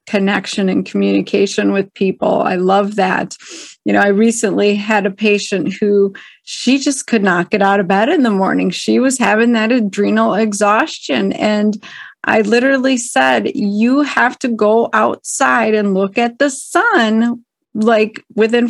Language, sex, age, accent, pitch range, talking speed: English, female, 30-49, American, 200-255 Hz, 155 wpm